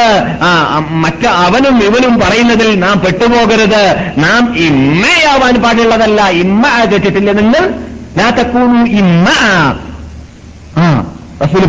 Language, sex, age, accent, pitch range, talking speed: Malayalam, male, 50-69, native, 165-235 Hz, 90 wpm